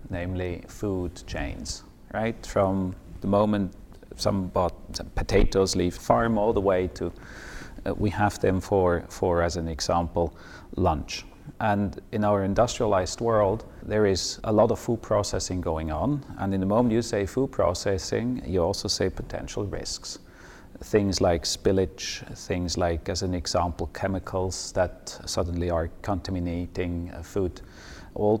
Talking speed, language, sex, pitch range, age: 145 wpm, English, male, 90-105 Hz, 40-59